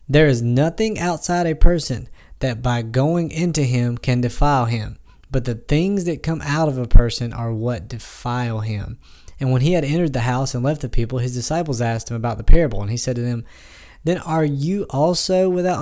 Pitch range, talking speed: 115-150 Hz, 210 wpm